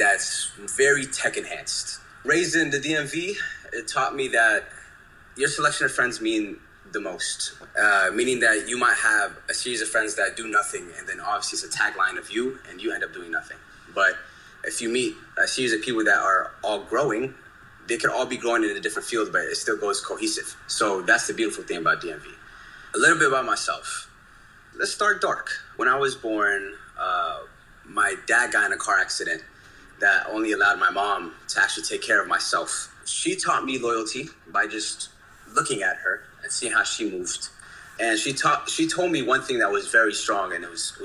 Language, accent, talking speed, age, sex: English, American, 205 wpm, 20-39, male